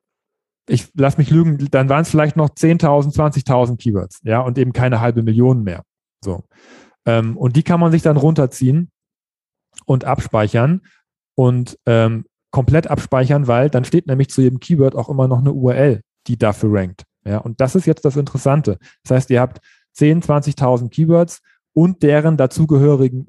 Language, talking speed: German, 165 wpm